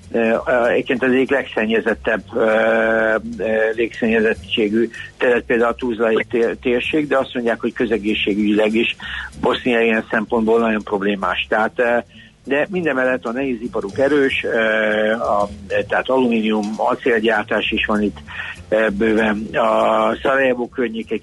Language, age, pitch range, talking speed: Hungarian, 60-79, 110-130 Hz, 135 wpm